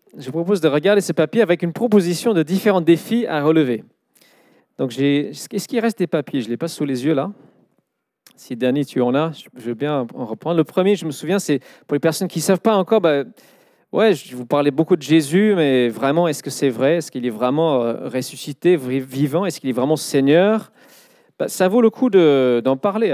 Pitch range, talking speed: 135-175 Hz, 225 wpm